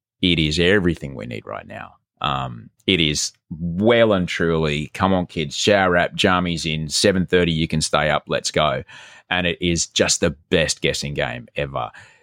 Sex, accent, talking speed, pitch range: male, Australian, 175 wpm, 85-120 Hz